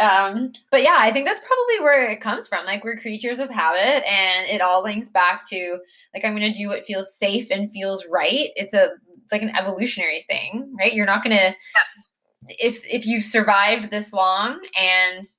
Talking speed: 195 wpm